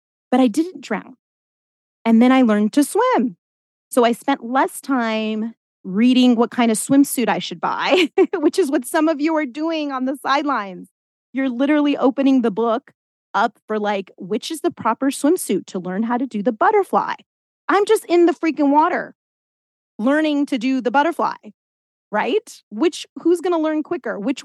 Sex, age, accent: female, 30-49, American